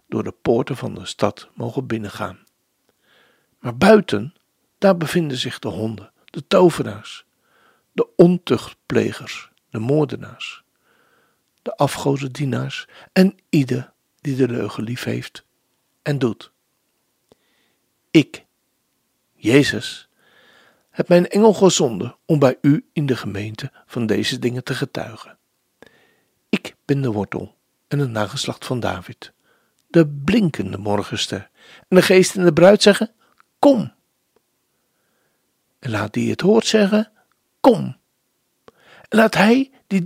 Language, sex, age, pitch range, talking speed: Dutch, male, 60-79, 120-180 Hz, 120 wpm